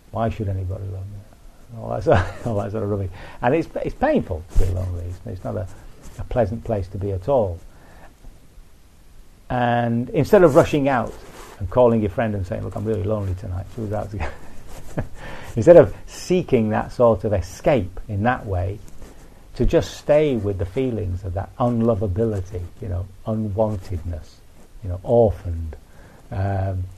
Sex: male